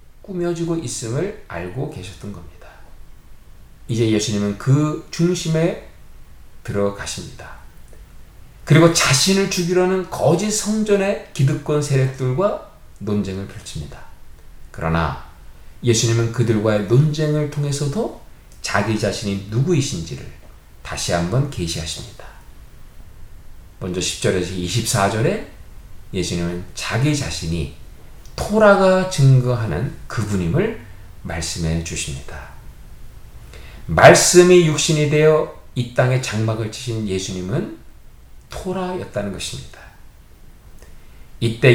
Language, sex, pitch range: Korean, male, 95-150 Hz